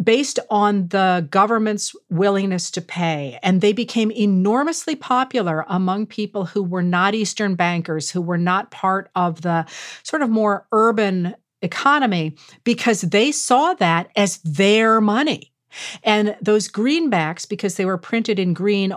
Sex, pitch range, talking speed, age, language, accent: female, 180-220 Hz, 145 wpm, 50-69, English, American